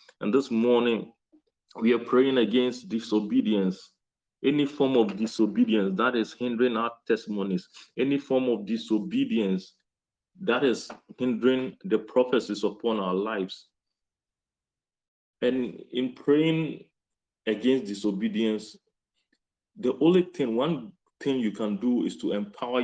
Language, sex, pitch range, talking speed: English, male, 105-130 Hz, 120 wpm